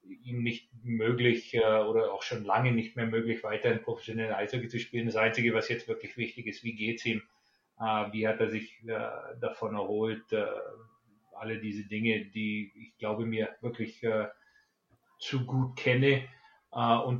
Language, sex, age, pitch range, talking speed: English, male, 30-49, 115-130 Hz, 150 wpm